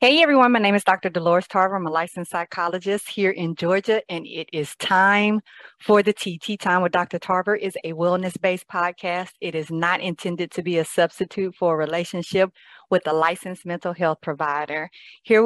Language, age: English, 40-59